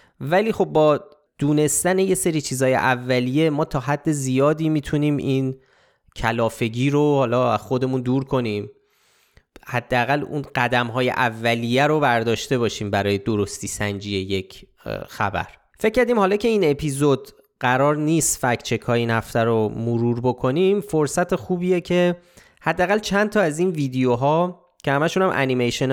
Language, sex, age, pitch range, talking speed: Persian, male, 20-39, 120-160 Hz, 135 wpm